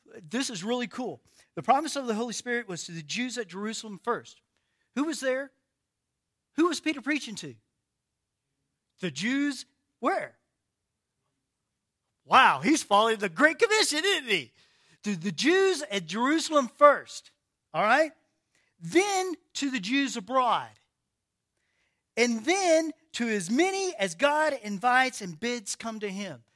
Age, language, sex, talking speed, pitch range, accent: 40-59, English, male, 140 wpm, 195-300 Hz, American